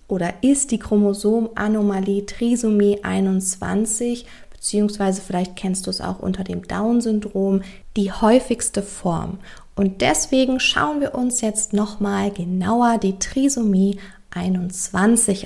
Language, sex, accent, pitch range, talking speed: German, female, German, 195-240 Hz, 115 wpm